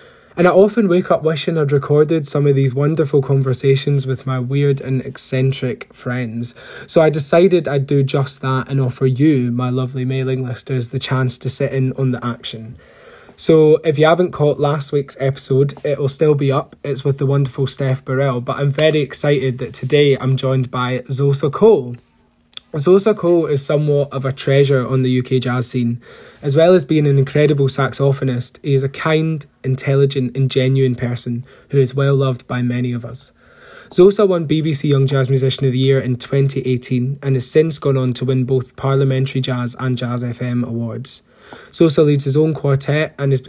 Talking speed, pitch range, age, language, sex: 190 wpm, 130-145 Hz, 20-39, English, male